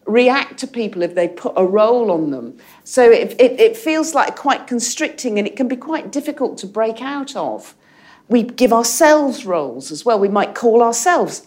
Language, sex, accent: English, female, British